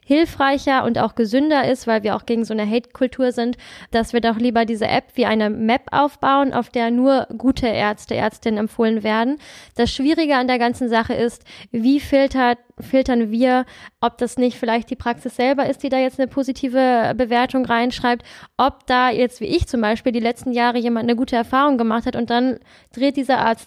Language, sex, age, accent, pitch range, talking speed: German, female, 10-29, German, 235-260 Hz, 200 wpm